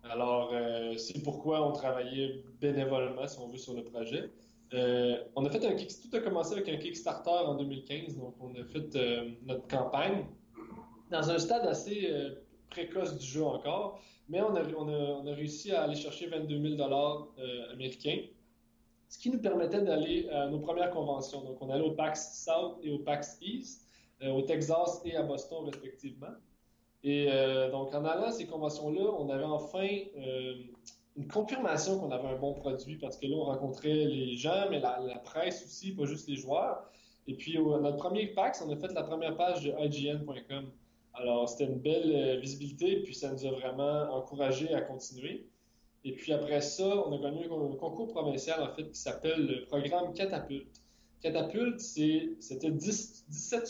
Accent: Canadian